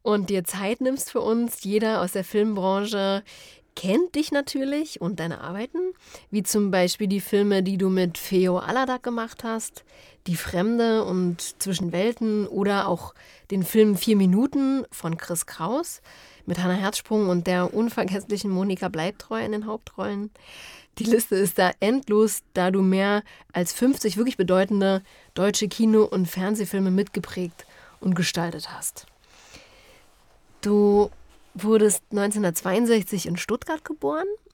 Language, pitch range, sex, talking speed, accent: German, 185-225 Hz, female, 135 wpm, German